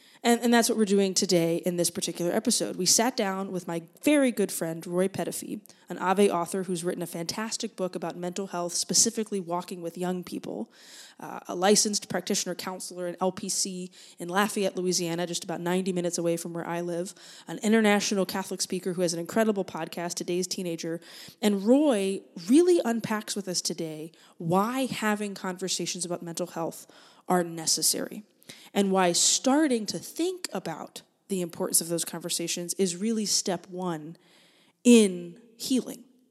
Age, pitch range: 20-39, 175-220 Hz